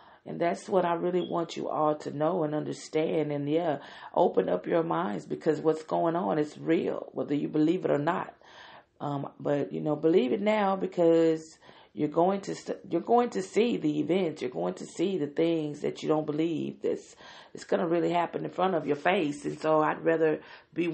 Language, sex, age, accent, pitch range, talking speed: English, female, 40-59, American, 145-165 Hz, 210 wpm